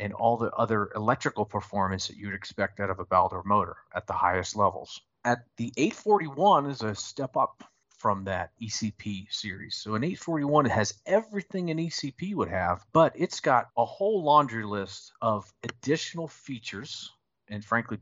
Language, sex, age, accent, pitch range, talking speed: English, male, 40-59, American, 100-135 Hz, 170 wpm